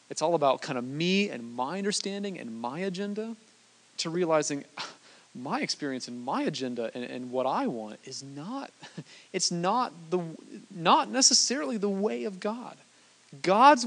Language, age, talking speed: English, 30-49, 155 wpm